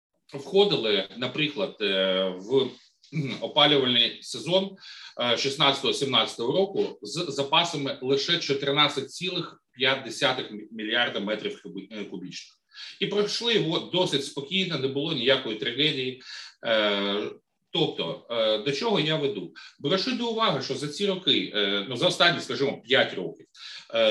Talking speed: 100 wpm